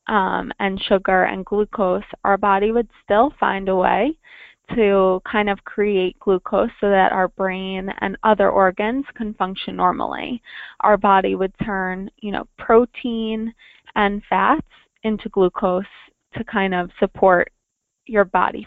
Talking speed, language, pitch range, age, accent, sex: 140 wpm, English, 195-230 Hz, 20-39, American, female